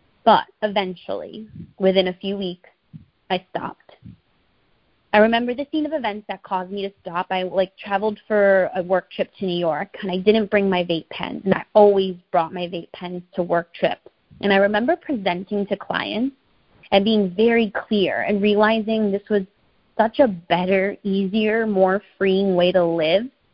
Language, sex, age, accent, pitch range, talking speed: English, female, 20-39, American, 185-215 Hz, 175 wpm